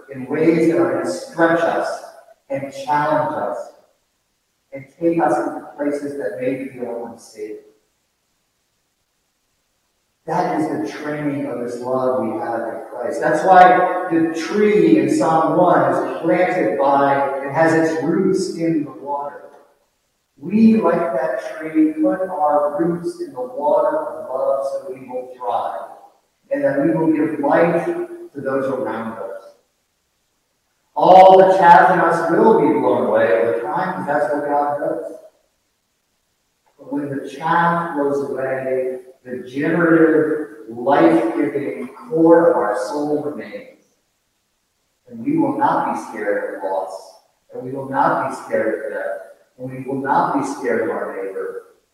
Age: 40-59